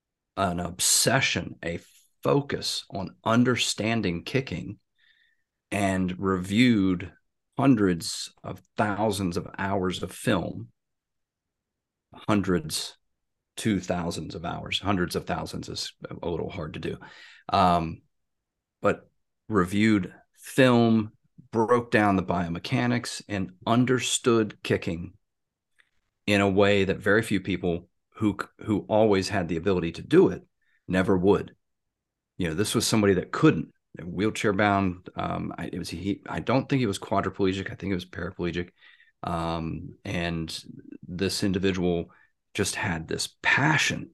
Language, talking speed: English, 125 wpm